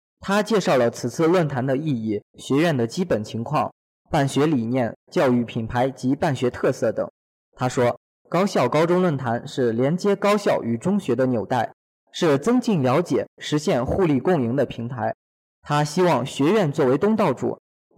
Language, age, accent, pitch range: Chinese, 20-39, native, 125-180 Hz